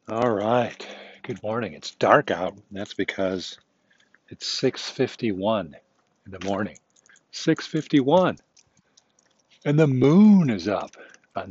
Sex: male